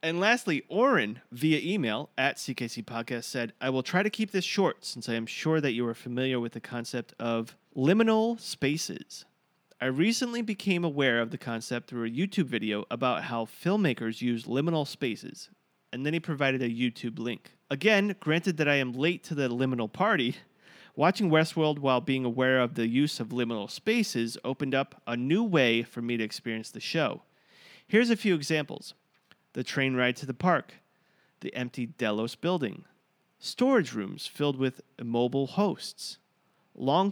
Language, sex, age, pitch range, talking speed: English, male, 30-49, 120-170 Hz, 175 wpm